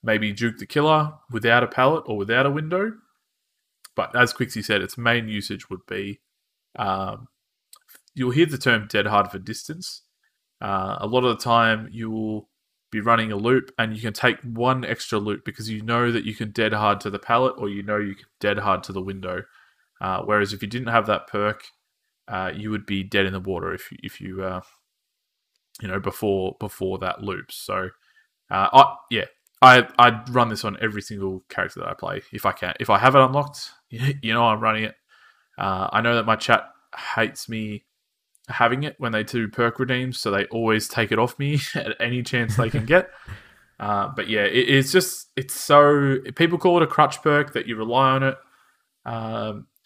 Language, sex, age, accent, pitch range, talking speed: English, male, 20-39, Australian, 105-130 Hz, 205 wpm